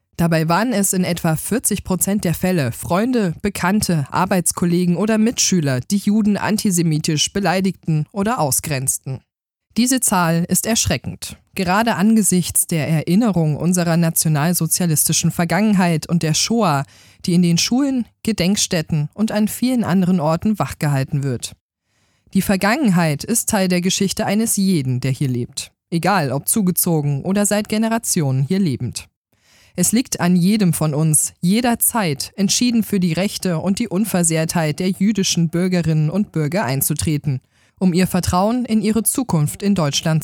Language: German